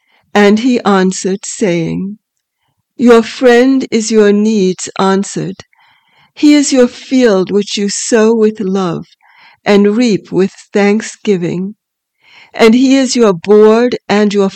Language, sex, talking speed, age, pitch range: English, female, 125 wpm, 60-79, 195-240 Hz